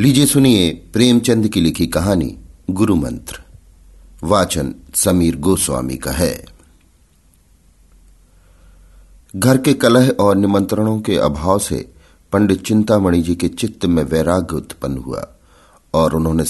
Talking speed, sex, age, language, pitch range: 115 wpm, male, 50-69, Hindi, 80-100 Hz